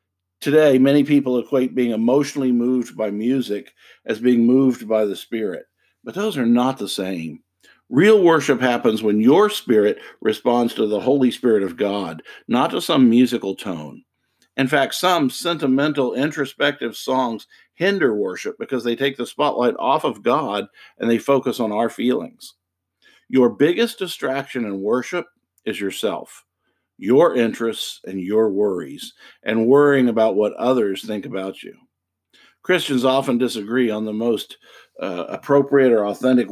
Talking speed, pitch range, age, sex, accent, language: 150 wpm, 105-140 Hz, 50-69, male, American, English